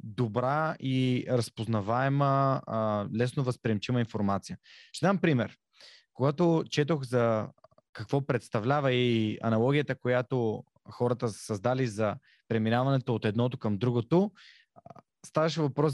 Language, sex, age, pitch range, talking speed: Bulgarian, male, 20-39, 120-150 Hz, 100 wpm